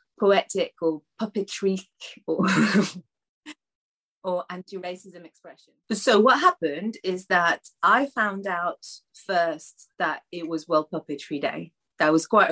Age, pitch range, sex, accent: 30-49, 165-205 Hz, female, British